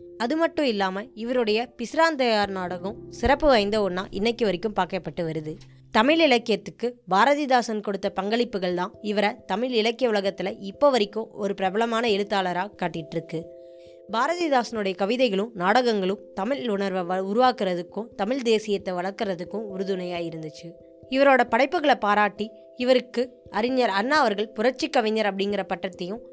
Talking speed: 110 wpm